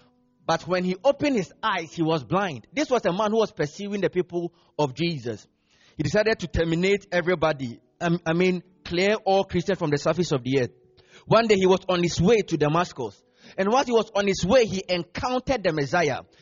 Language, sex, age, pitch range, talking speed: English, male, 30-49, 140-225 Hz, 205 wpm